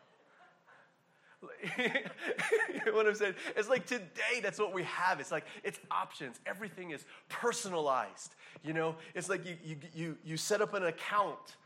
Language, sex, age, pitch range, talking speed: English, male, 30-49, 165-220 Hz, 160 wpm